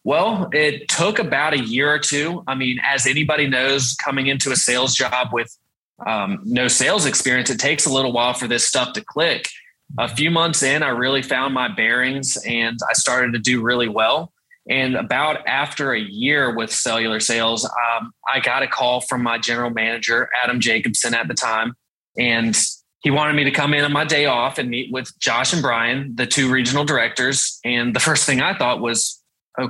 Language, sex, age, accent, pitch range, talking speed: English, male, 20-39, American, 120-145 Hz, 200 wpm